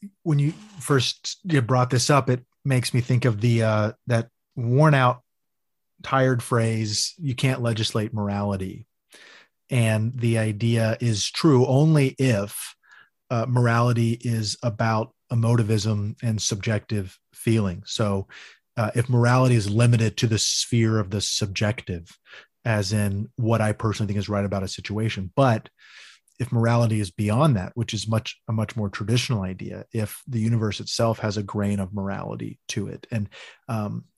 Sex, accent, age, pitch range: male, American, 30-49, 105-120 Hz